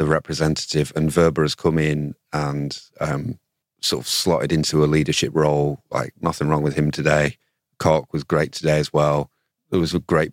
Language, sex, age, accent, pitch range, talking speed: English, male, 30-49, British, 75-80 Hz, 185 wpm